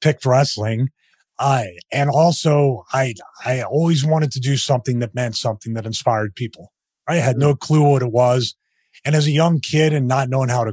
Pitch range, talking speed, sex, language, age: 120-150 Hz, 195 wpm, male, English, 30-49